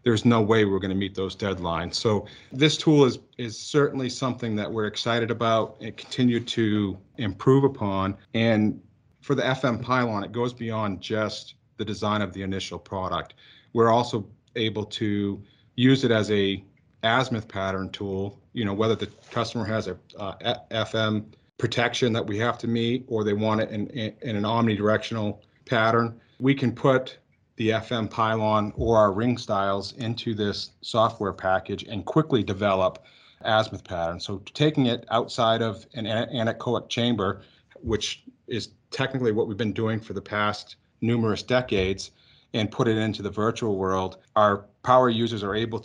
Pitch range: 100-120 Hz